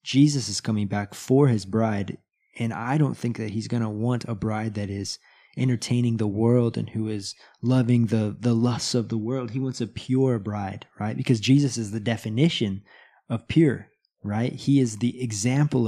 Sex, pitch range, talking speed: male, 110-130 Hz, 195 wpm